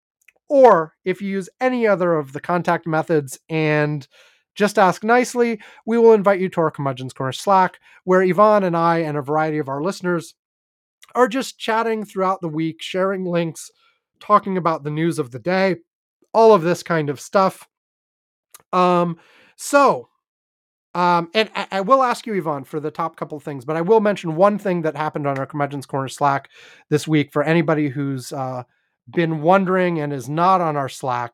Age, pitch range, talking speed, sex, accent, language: 30-49, 150-190 Hz, 185 wpm, male, American, English